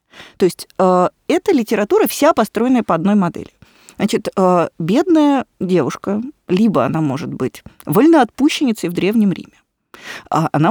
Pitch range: 170-245 Hz